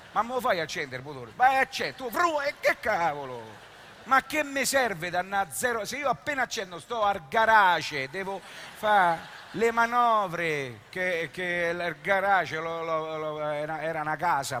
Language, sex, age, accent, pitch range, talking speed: Italian, male, 50-69, native, 135-185 Hz, 150 wpm